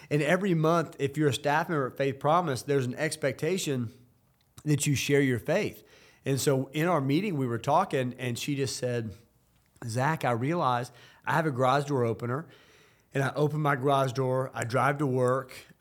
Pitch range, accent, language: 125-150 Hz, American, English